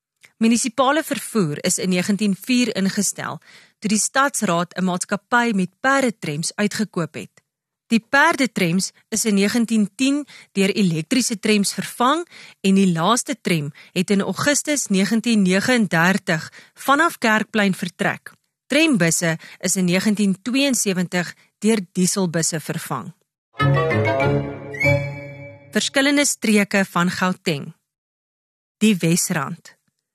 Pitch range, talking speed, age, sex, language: 175-230 Hz, 95 wpm, 30-49, female, English